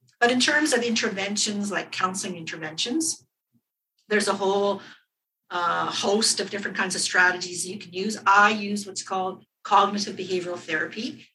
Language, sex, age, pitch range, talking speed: English, female, 50-69, 195-240 Hz, 150 wpm